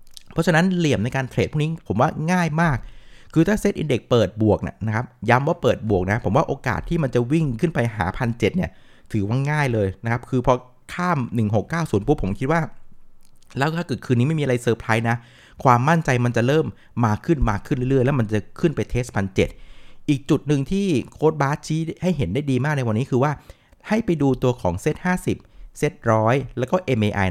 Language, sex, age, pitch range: Thai, male, 60-79, 115-160 Hz